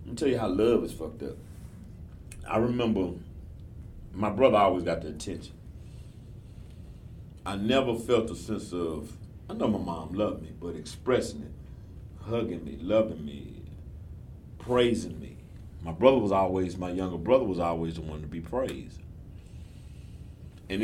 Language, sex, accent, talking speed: English, male, American, 150 wpm